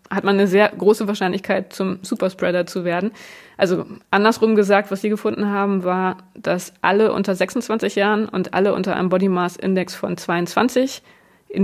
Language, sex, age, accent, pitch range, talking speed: German, female, 20-39, German, 185-210 Hz, 170 wpm